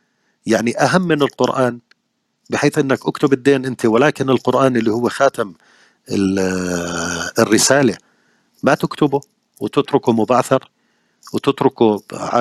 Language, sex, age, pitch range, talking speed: Arabic, male, 40-59, 100-125 Hz, 95 wpm